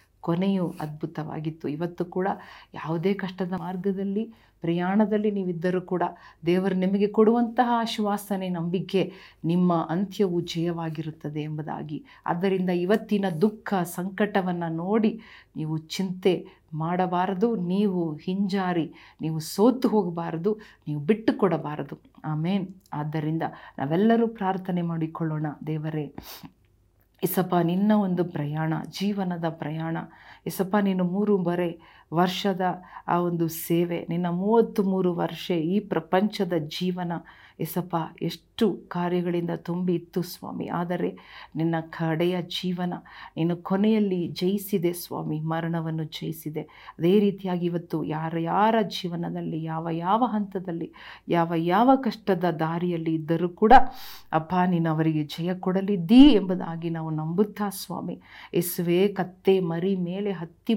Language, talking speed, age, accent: Kannada, 105 wpm, 50-69, native